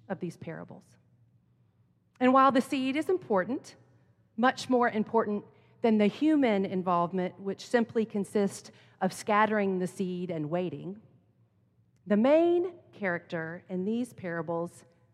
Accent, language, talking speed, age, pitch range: American, English, 125 wpm, 40-59, 180-255 Hz